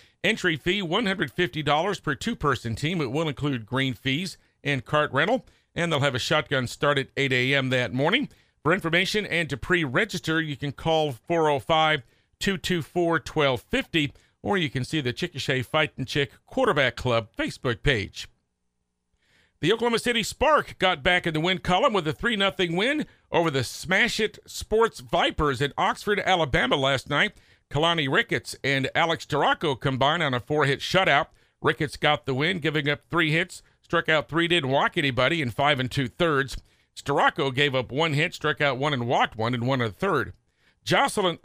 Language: English